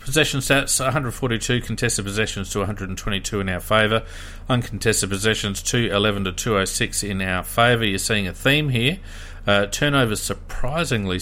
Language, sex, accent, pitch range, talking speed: English, male, Australian, 90-110 Hz, 140 wpm